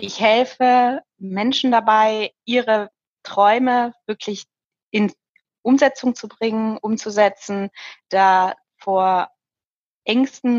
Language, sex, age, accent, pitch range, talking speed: German, female, 20-39, German, 185-220 Hz, 85 wpm